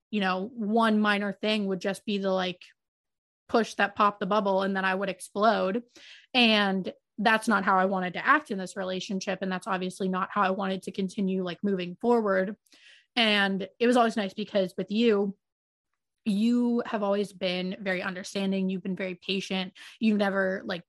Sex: female